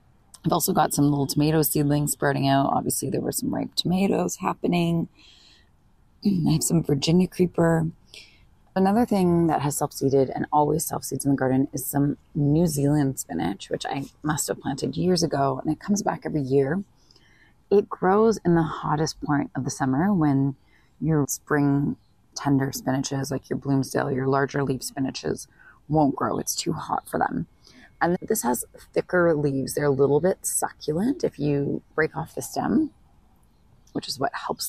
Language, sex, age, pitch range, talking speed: English, female, 30-49, 140-180 Hz, 170 wpm